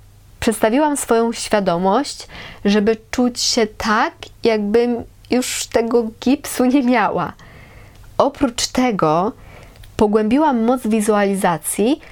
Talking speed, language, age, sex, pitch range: 90 wpm, Polish, 20-39, female, 205-245 Hz